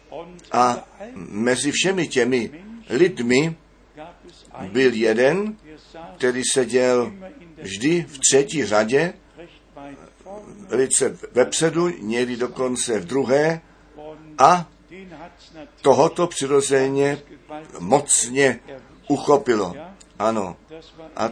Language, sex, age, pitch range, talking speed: Czech, male, 60-79, 125-170 Hz, 75 wpm